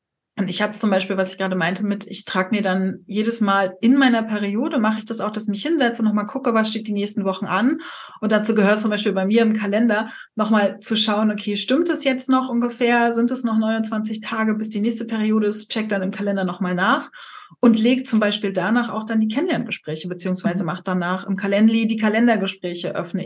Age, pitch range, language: 30-49, 200-235 Hz, German